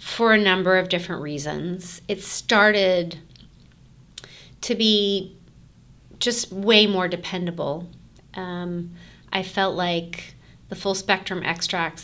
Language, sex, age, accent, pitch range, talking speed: English, female, 30-49, American, 160-190 Hz, 110 wpm